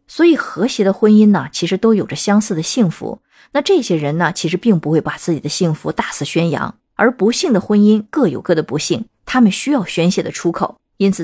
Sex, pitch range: female, 165-230 Hz